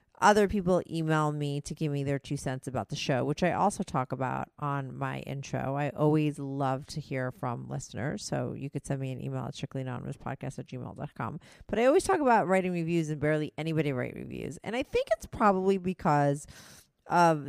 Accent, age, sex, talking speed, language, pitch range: American, 40-59, female, 205 wpm, English, 140-175 Hz